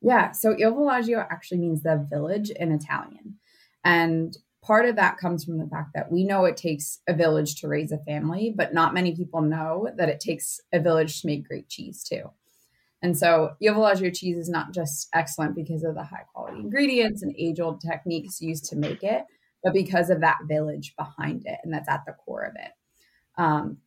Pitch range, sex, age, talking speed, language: 155-180 Hz, female, 20-39, 205 wpm, English